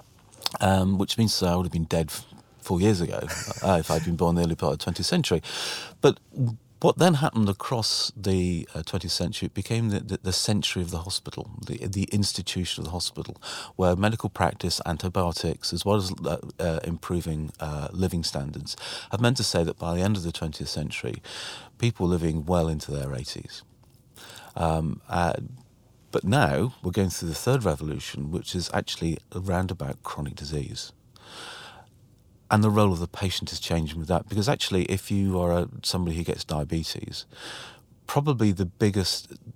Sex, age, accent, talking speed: male, 40-59, British, 185 wpm